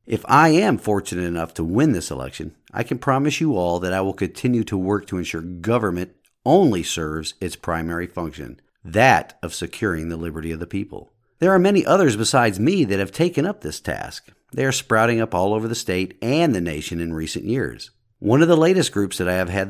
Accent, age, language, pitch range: American, 50-69, English, 90-115 Hz